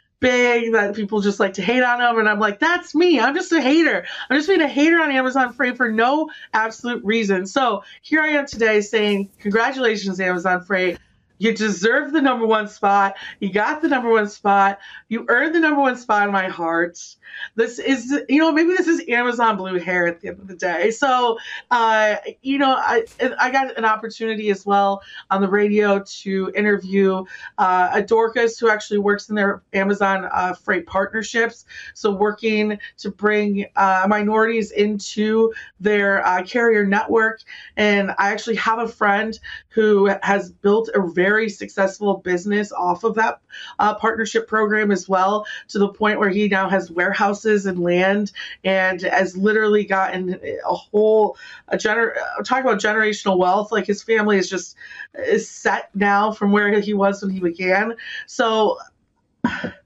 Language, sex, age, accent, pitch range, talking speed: English, female, 30-49, American, 195-230 Hz, 175 wpm